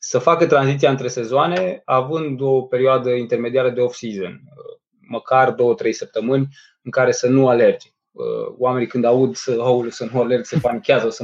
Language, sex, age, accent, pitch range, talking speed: Romanian, male, 20-39, native, 125-165 Hz, 160 wpm